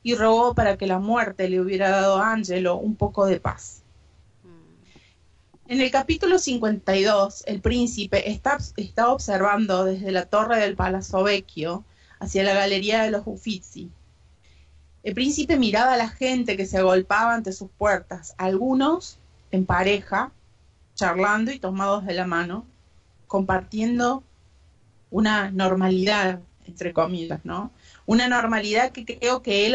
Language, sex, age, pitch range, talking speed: English, female, 30-49, 180-225 Hz, 140 wpm